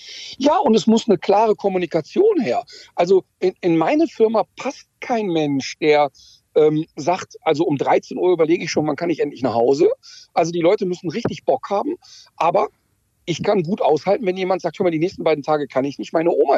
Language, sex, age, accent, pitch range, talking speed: German, male, 50-69, German, 160-265 Hz, 210 wpm